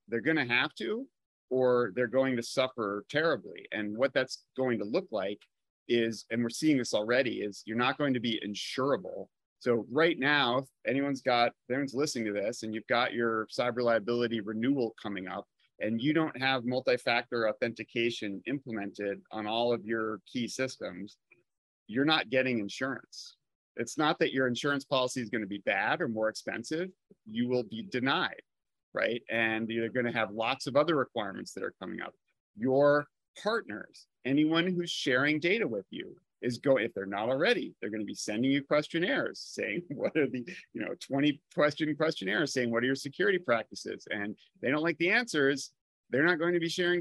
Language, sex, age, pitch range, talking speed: English, male, 30-49, 115-150 Hz, 185 wpm